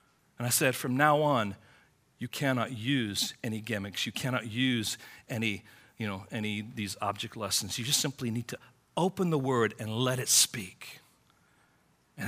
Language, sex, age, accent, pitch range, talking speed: English, male, 40-59, American, 125-200 Hz, 170 wpm